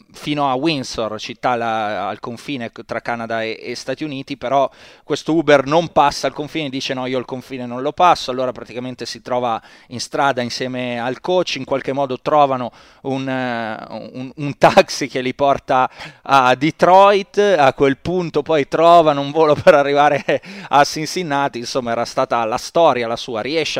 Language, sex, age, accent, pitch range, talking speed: Italian, male, 30-49, native, 120-145 Hz, 170 wpm